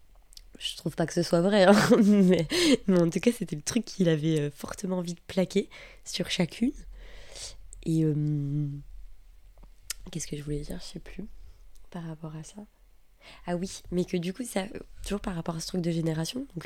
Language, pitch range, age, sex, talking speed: French, 160-190 Hz, 20-39, female, 195 wpm